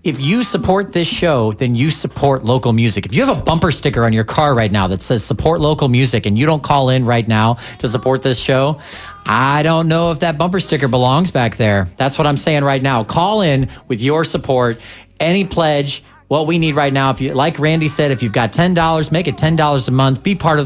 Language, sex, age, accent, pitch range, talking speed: English, male, 40-59, American, 120-160 Hz, 240 wpm